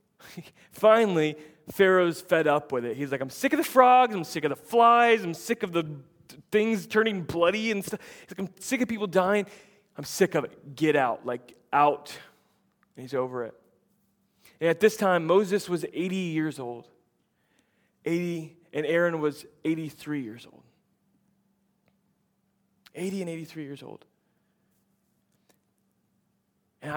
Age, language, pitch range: 20-39, English, 145-185 Hz